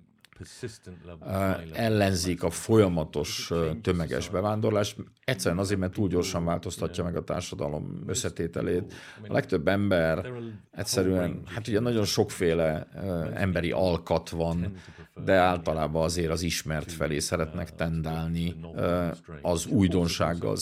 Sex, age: male, 50-69